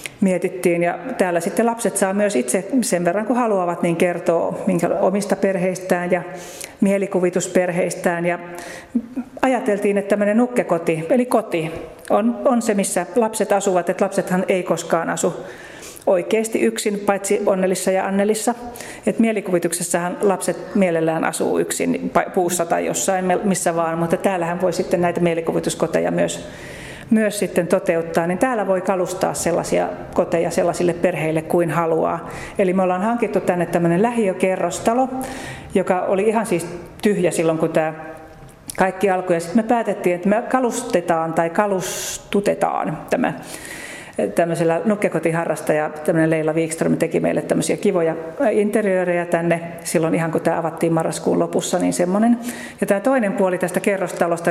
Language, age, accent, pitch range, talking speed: Finnish, 40-59, native, 170-205 Hz, 135 wpm